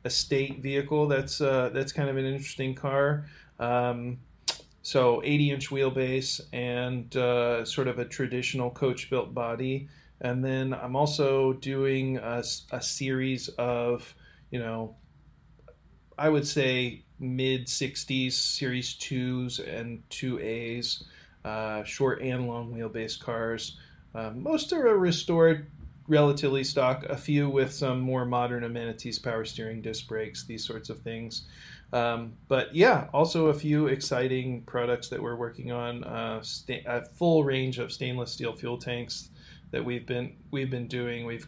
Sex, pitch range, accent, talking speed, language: male, 120-140 Hz, American, 150 wpm, English